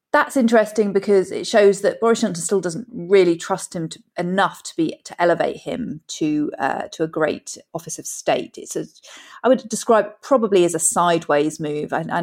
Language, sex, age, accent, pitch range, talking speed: English, female, 30-49, British, 160-190 Hz, 195 wpm